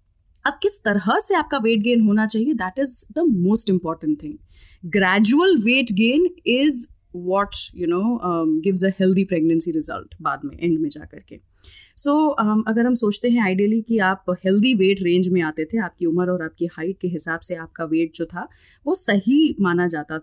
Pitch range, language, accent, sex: 175-275 Hz, Hindi, native, female